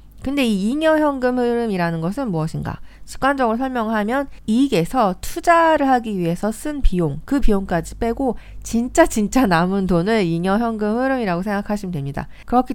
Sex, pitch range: female, 170-245 Hz